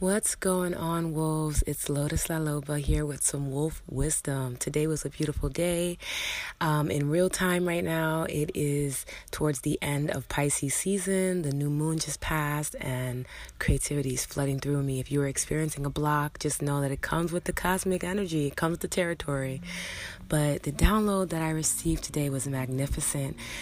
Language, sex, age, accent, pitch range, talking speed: English, female, 20-39, American, 140-165 Hz, 180 wpm